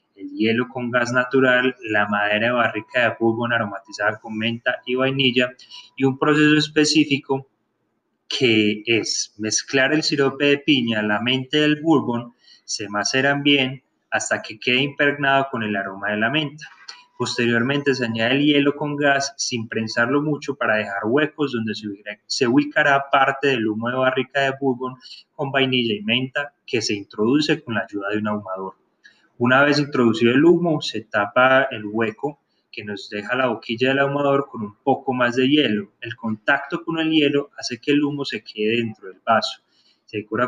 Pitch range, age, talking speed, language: 110-145 Hz, 20-39, 175 wpm, Spanish